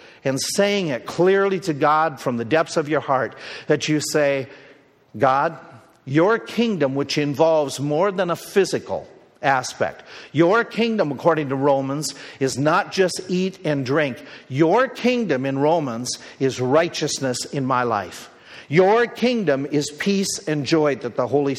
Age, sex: 50-69, male